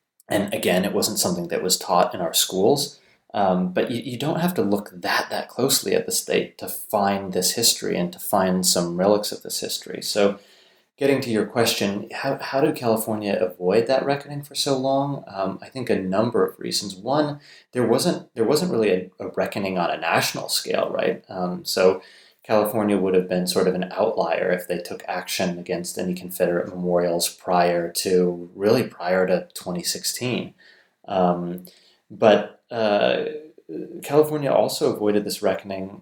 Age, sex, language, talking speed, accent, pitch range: 30-49, male, English, 175 wpm, American, 90-115 Hz